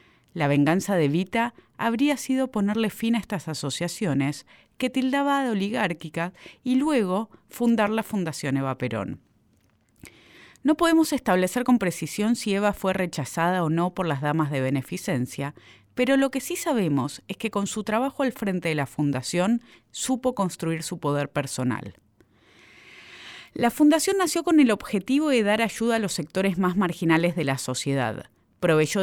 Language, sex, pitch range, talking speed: Spanish, female, 150-230 Hz, 155 wpm